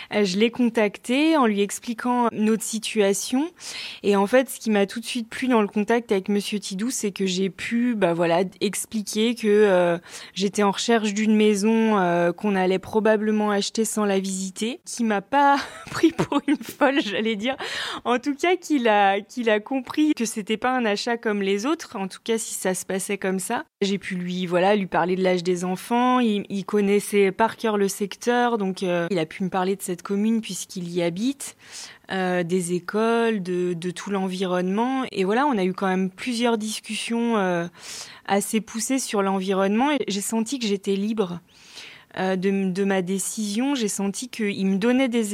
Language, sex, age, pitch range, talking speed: French, female, 20-39, 195-230 Hz, 200 wpm